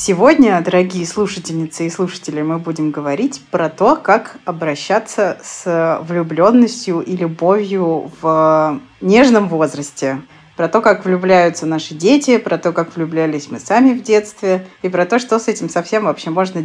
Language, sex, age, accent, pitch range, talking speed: Russian, female, 20-39, native, 165-220 Hz, 150 wpm